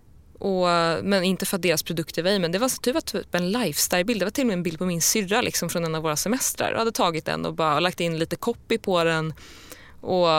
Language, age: English, 20-39